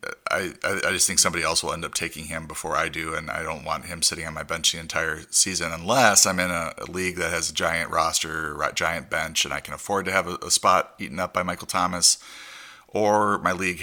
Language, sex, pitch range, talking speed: English, male, 75-85 Hz, 245 wpm